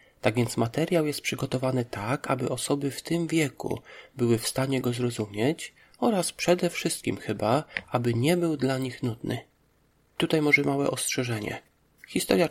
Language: Polish